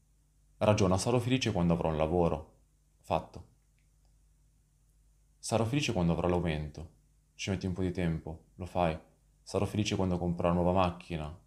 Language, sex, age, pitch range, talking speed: Italian, male, 20-39, 85-110 Hz, 145 wpm